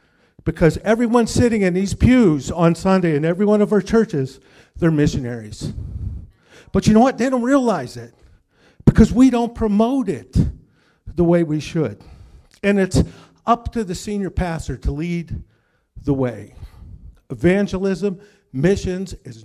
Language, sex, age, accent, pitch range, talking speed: English, male, 50-69, American, 135-190 Hz, 145 wpm